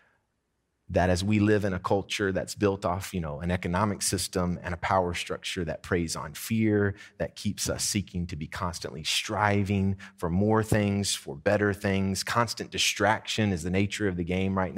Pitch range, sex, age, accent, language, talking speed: 100-135 Hz, male, 30-49, American, English, 185 wpm